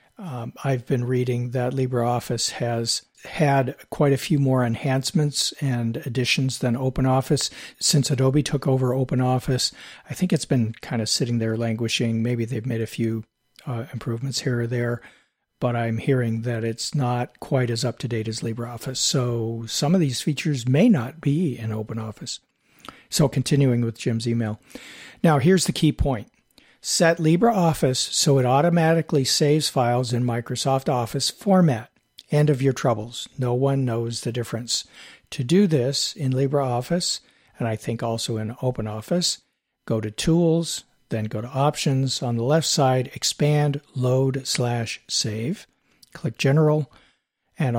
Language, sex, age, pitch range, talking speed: English, male, 50-69, 120-145 Hz, 150 wpm